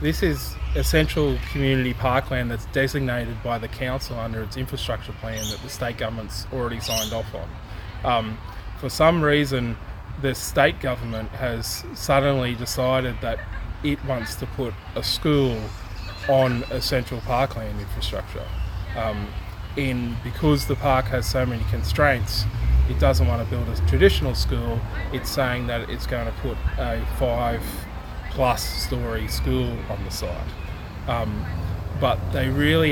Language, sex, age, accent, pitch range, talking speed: English, male, 20-39, Australian, 100-130 Hz, 150 wpm